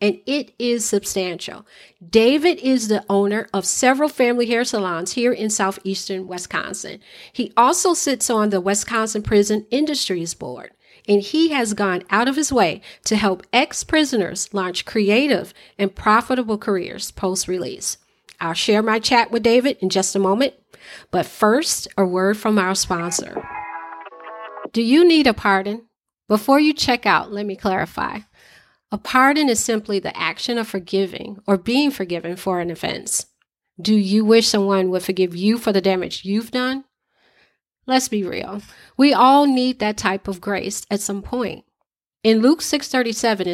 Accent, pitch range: American, 190-245 Hz